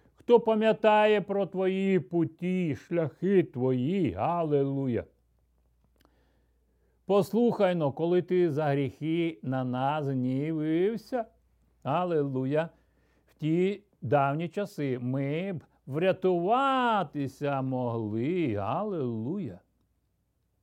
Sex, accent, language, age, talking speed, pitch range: male, native, Ukrainian, 60-79, 80 wpm, 105-170 Hz